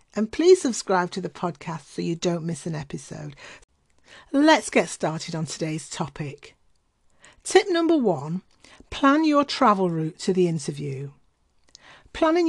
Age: 50-69